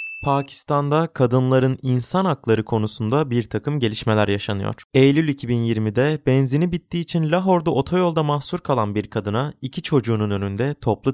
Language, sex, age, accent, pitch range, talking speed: Turkish, male, 20-39, native, 110-145 Hz, 130 wpm